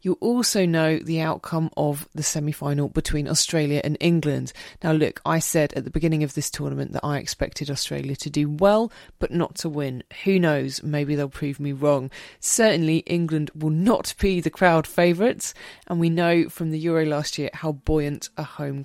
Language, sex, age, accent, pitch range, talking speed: English, female, 20-39, British, 150-180 Hz, 190 wpm